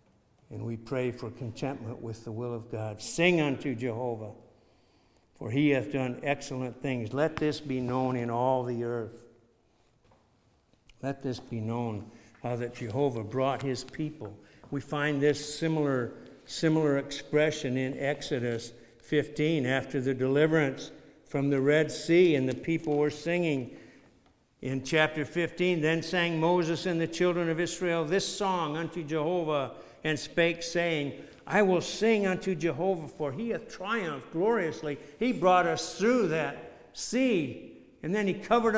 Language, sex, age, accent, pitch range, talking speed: English, male, 60-79, American, 120-165 Hz, 150 wpm